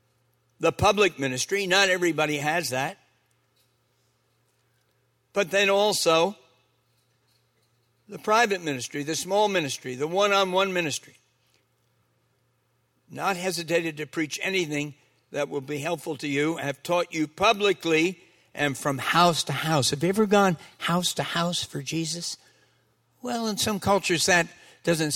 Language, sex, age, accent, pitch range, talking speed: English, male, 60-79, American, 135-175 Hz, 130 wpm